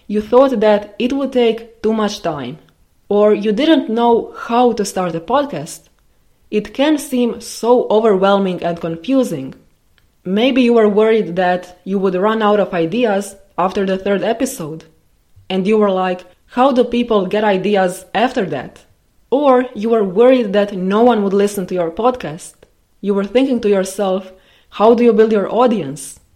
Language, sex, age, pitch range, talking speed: English, female, 20-39, 180-230 Hz, 170 wpm